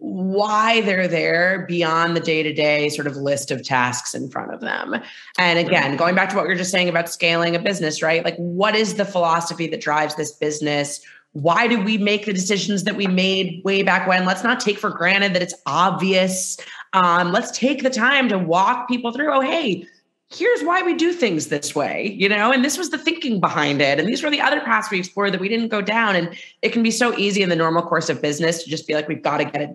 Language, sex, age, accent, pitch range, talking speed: English, female, 30-49, American, 165-215 Hz, 240 wpm